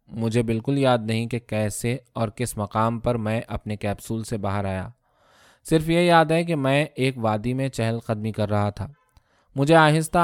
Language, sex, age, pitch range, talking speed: Urdu, male, 20-39, 110-135 Hz, 190 wpm